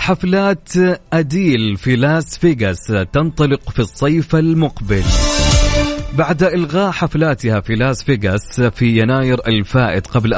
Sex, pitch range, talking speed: male, 120-170 Hz, 110 wpm